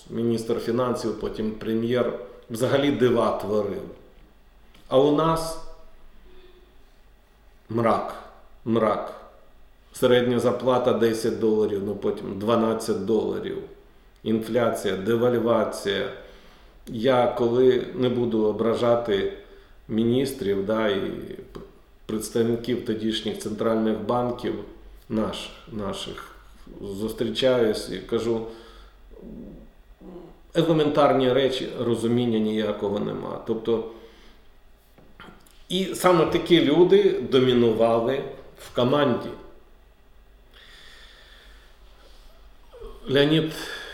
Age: 40-59